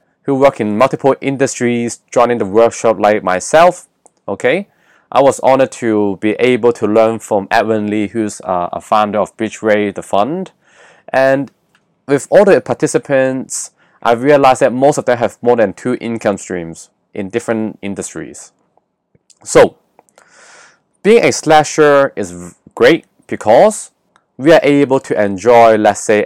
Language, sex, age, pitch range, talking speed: English, male, 20-39, 105-140 Hz, 145 wpm